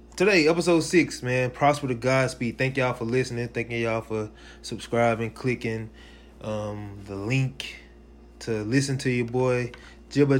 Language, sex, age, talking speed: English, male, 20-39, 150 wpm